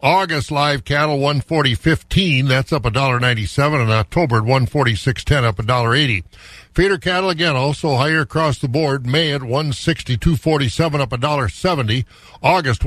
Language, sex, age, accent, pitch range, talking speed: English, male, 50-69, American, 125-160 Hz, 205 wpm